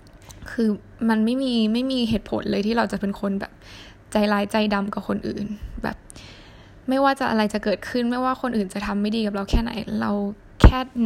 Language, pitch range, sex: Thai, 200-230 Hz, female